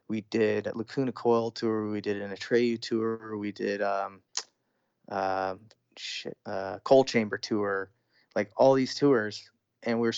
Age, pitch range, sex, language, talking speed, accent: 20-39, 105-125 Hz, male, English, 160 wpm, American